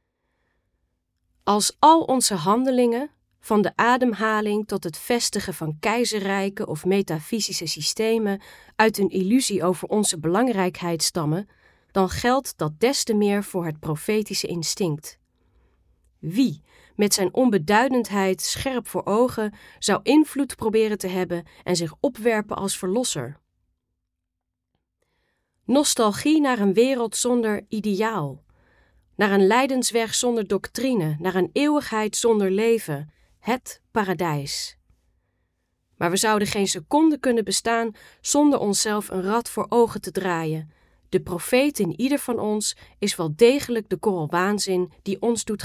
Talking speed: 125 wpm